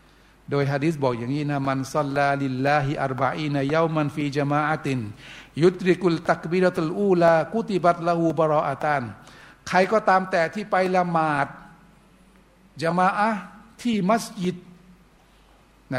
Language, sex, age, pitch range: Thai, male, 60-79, 140-185 Hz